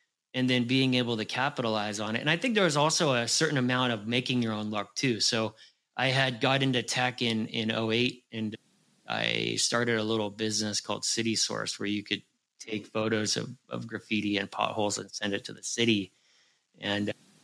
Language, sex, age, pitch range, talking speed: English, male, 30-49, 110-125 Hz, 200 wpm